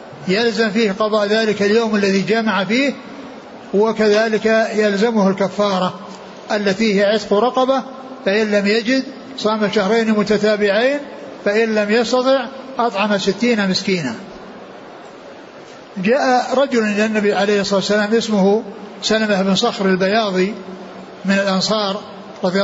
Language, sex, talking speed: Arabic, male, 110 wpm